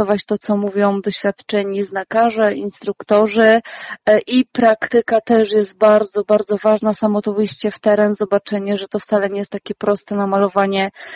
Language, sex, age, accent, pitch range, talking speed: Polish, female, 20-39, native, 200-220 Hz, 145 wpm